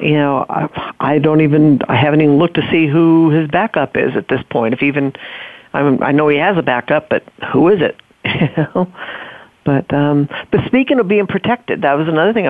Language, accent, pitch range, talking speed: English, American, 150-195 Hz, 220 wpm